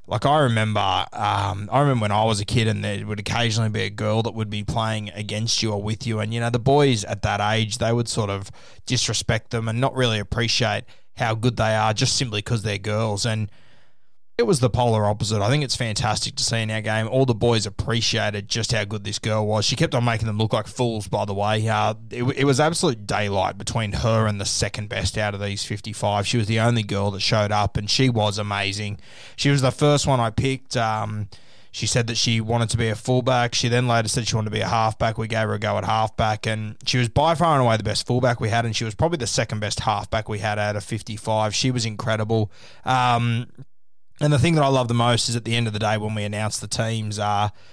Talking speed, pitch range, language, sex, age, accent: 255 wpm, 105-125 Hz, English, male, 20-39, Australian